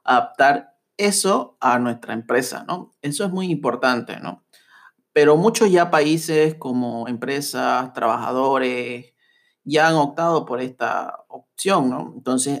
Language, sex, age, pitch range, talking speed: Spanish, male, 30-49, 125-155 Hz, 125 wpm